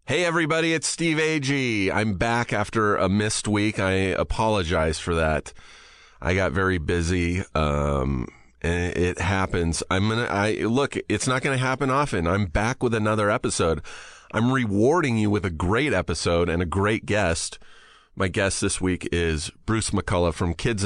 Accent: American